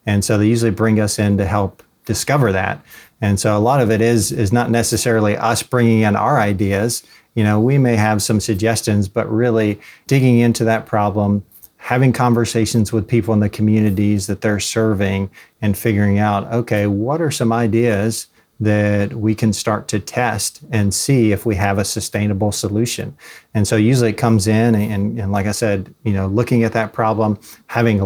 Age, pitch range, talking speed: 40-59, 105-115 Hz, 190 wpm